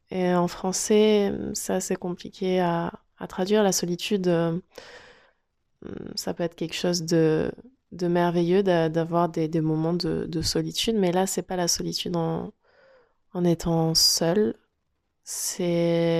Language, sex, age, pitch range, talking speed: French, female, 20-39, 160-180 Hz, 145 wpm